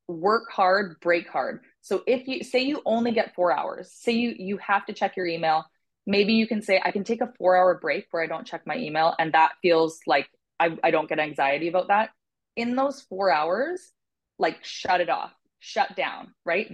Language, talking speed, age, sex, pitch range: English, 215 wpm, 20-39, female, 175-230 Hz